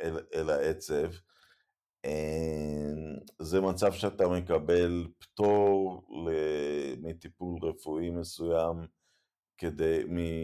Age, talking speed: 50-69, 85 wpm